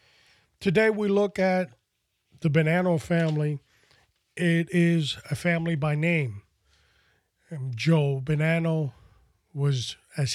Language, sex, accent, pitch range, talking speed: English, male, American, 135-175 Hz, 100 wpm